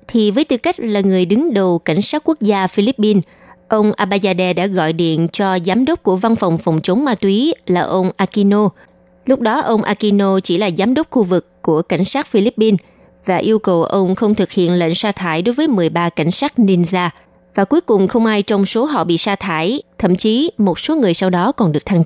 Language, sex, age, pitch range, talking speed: Vietnamese, female, 20-39, 180-230 Hz, 225 wpm